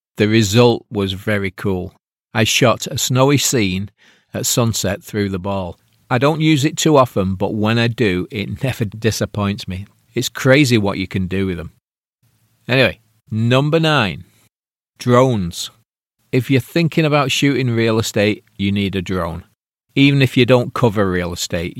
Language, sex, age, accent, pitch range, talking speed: English, male, 40-59, British, 95-120 Hz, 160 wpm